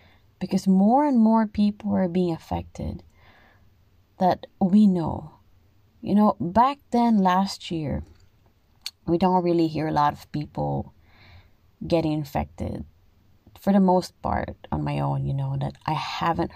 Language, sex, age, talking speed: Filipino, female, 20-39, 140 wpm